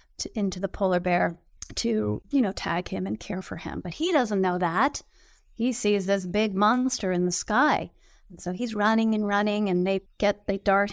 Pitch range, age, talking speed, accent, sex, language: 185-215 Hz, 30-49, 205 wpm, American, female, English